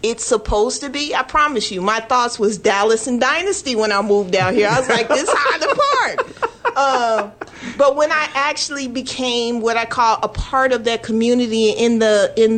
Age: 40-59